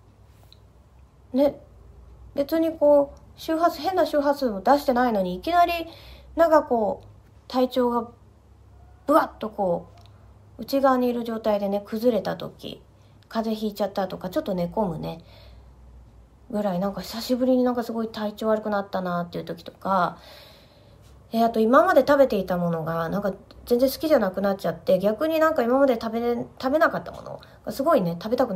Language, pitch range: Japanese, 180-275 Hz